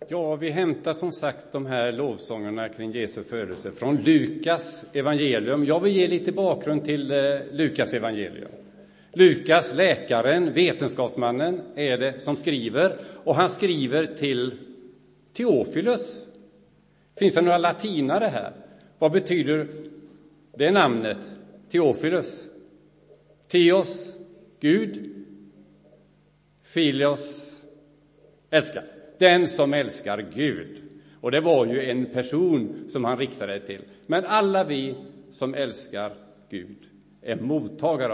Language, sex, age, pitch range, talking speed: Swedish, male, 50-69, 125-175 Hz, 110 wpm